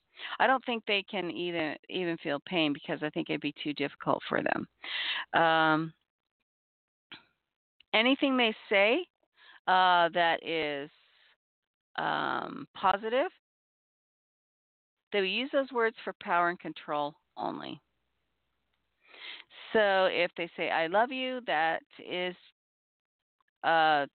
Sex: female